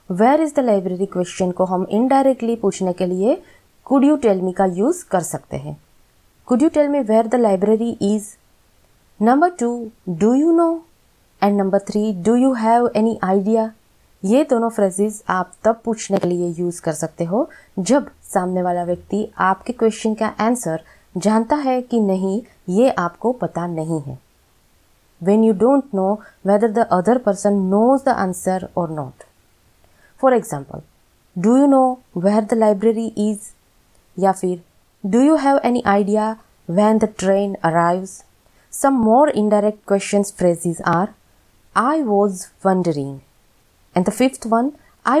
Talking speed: 155 wpm